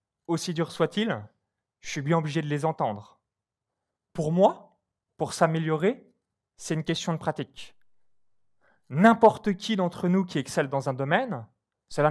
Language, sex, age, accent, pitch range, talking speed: French, male, 30-49, French, 135-185 Hz, 145 wpm